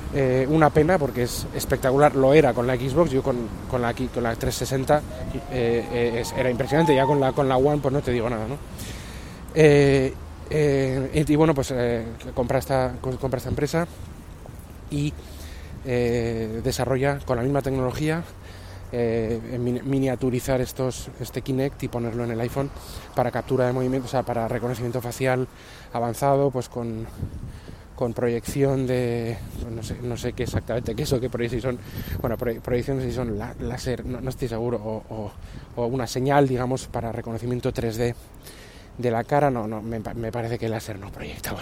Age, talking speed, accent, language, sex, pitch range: 20-39, 180 wpm, Spanish, Spanish, male, 115-130 Hz